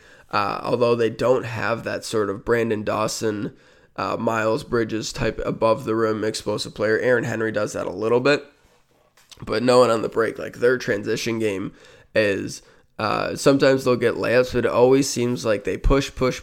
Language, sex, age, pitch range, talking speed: English, male, 20-39, 110-125 Hz, 175 wpm